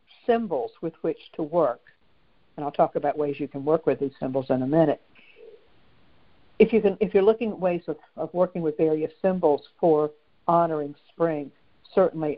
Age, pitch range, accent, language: 60-79, 140-170 Hz, American, English